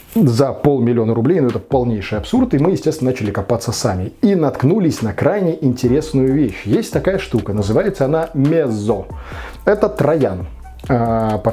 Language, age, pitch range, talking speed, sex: Russian, 20-39, 115-155 Hz, 145 wpm, male